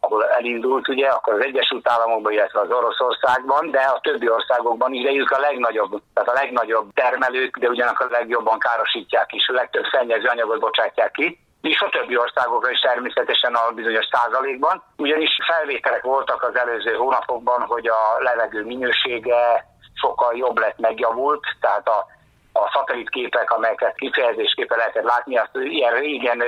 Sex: male